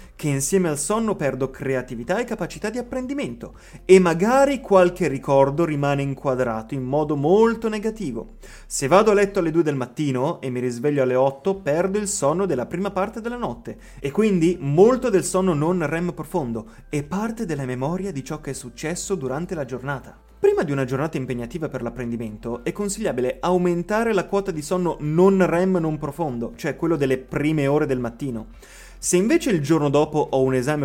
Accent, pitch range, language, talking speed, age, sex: native, 130-195 Hz, Italian, 185 wpm, 30-49, male